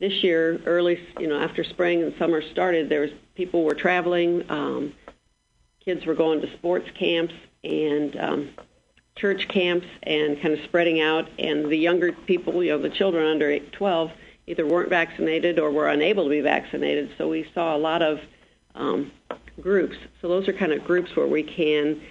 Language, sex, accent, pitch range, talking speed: English, female, American, 150-170 Hz, 180 wpm